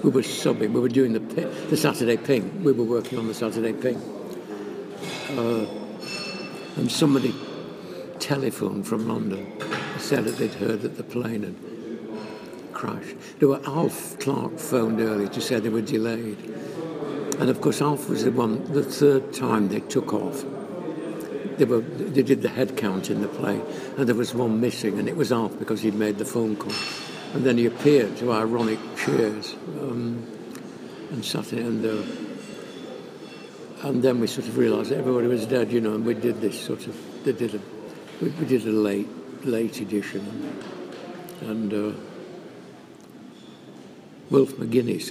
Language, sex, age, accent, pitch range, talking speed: English, male, 60-79, British, 110-130 Hz, 165 wpm